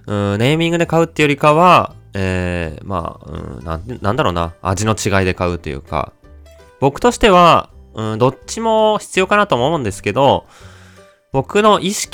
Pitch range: 95-155 Hz